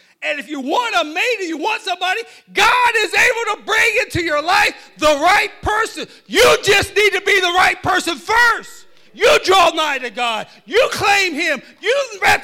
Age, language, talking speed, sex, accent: 40-59, English, 190 wpm, male, American